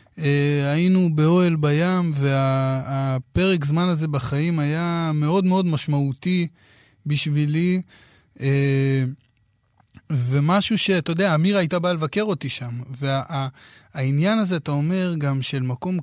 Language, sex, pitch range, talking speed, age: Hebrew, male, 135-170 Hz, 125 wpm, 20-39